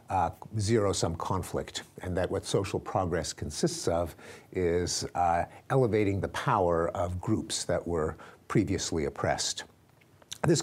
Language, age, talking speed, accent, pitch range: Swedish, 50-69, 125 wpm, American, 85-115 Hz